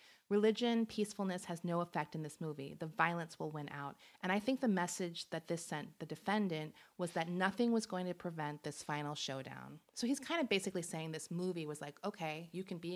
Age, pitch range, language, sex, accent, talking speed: 30-49, 150-195 Hz, English, female, American, 220 wpm